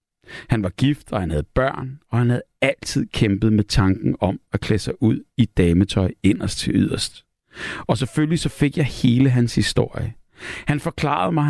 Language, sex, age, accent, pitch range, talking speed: Danish, male, 60-79, native, 105-140 Hz, 185 wpm